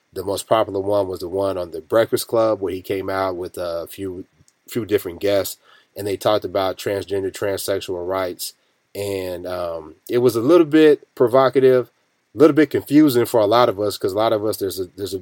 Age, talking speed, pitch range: 30-49, 215 wpm, 95-115 Hz